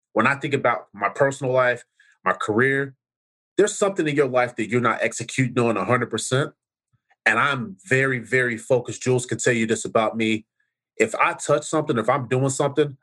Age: 30-49